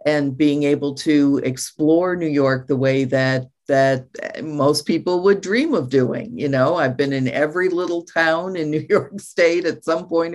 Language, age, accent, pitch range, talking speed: English, 50-69, American, 135-160 Hz, 185 wpm